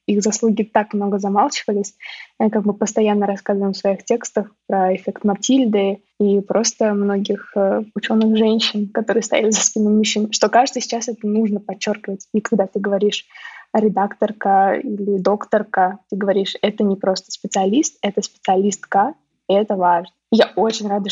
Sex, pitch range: female, 200-225 Hz